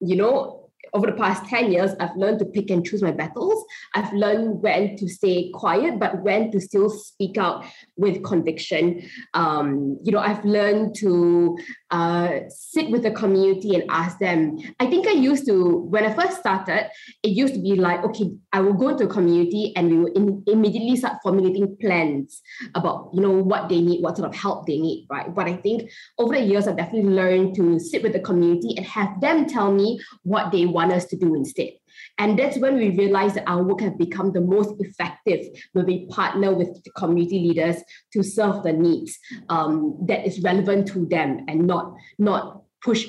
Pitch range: 175-215 Hz